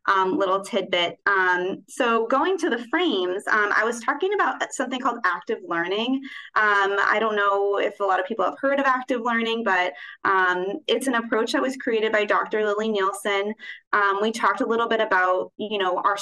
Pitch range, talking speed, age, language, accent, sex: 195-240 Hz, 200 wpm, 20-39, English, American, female